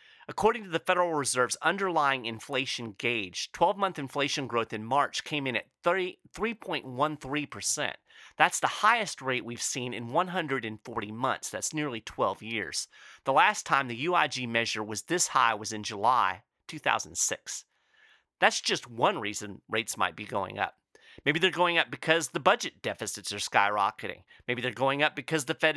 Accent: American